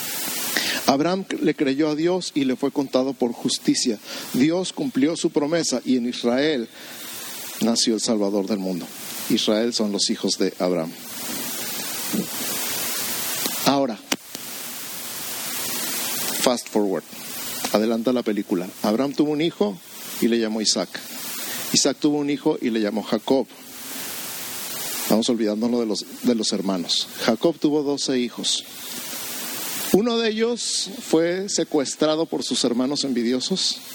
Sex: male